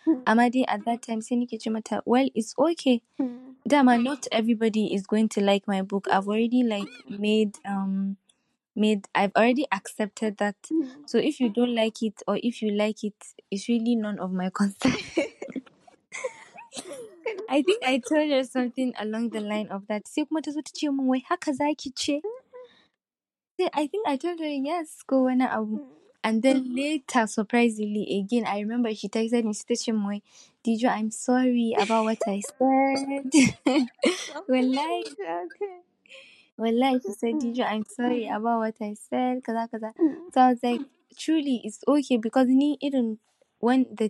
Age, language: 10-29, English